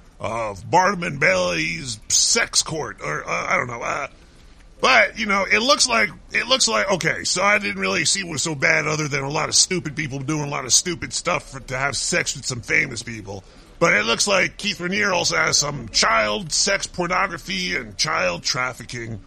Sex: female